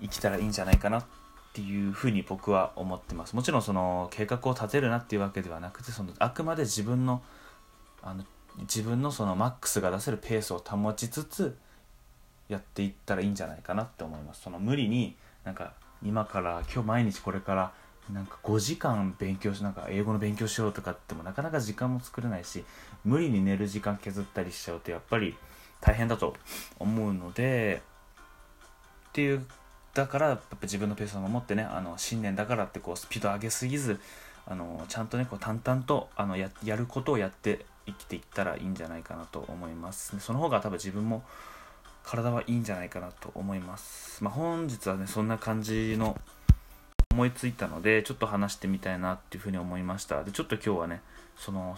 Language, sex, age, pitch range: Japanese, male, 20-39, 95-115 Hz